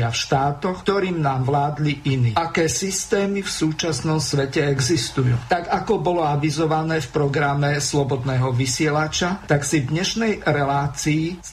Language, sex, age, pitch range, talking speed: Slovak, male, 50-69, 140-170 Hz, 140 wpm